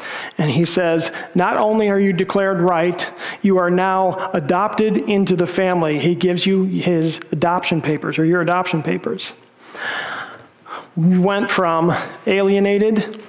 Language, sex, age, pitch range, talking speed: English, male, 40-59, 165-195 Hz, 135 wpm